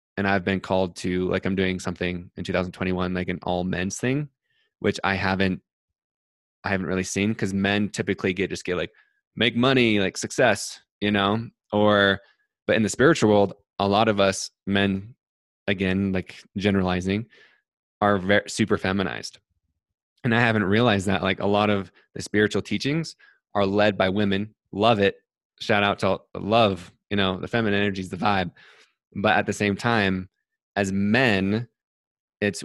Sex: male